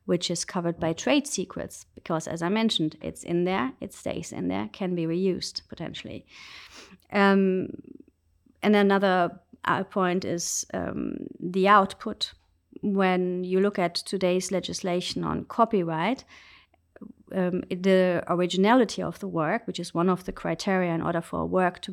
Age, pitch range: 30-49, 170-200 Hz